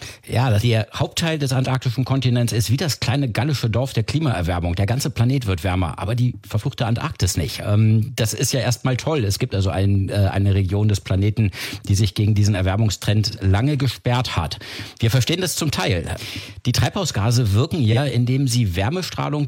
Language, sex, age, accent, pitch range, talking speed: German, male, 50-69, German, 100-125 Hz, 180 wpm